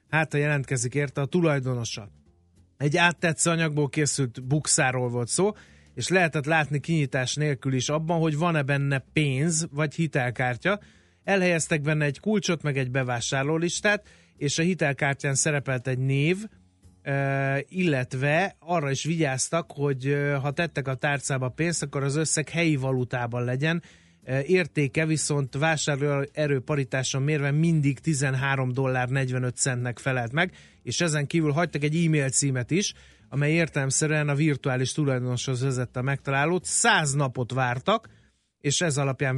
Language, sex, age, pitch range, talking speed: Hungarian, male, 30-49, 130-160 Hz, 135 wpm